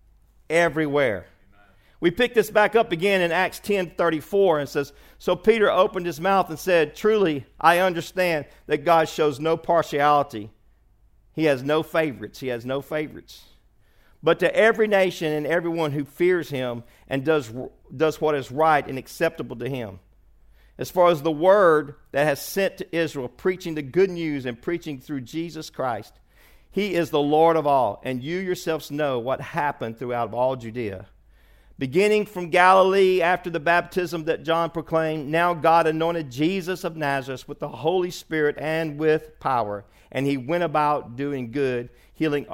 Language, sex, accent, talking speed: English, male, American, 165 wpm